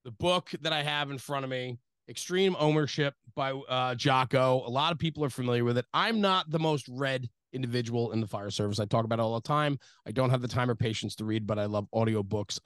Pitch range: 120-145 Hz